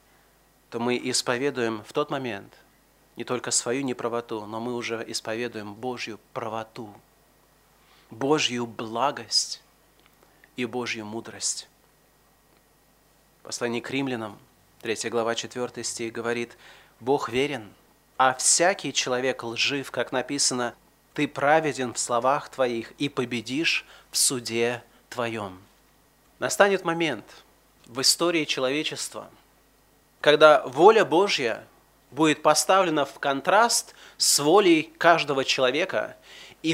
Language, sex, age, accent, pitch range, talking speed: Russian, male, 30-49, native, 120-165 Hz, 105 wpm